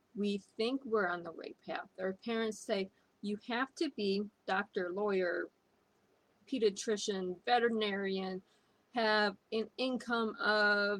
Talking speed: 120 wpm